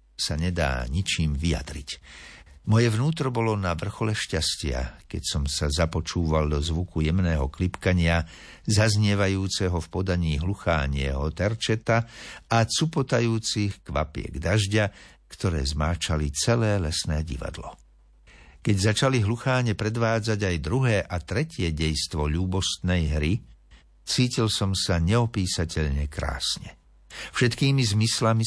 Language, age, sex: Slovak, 60-79, male